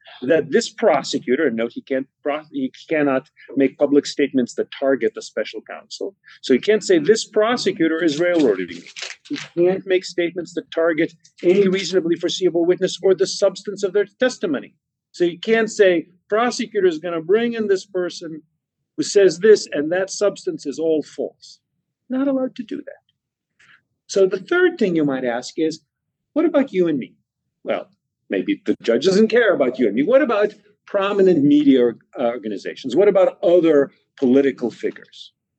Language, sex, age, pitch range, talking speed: English, male, 40-59, 135-210 Hz, 165 wpm